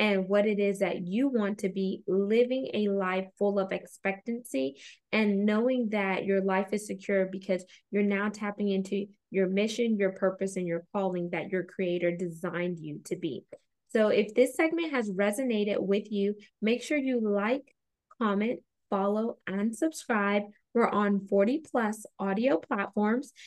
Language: English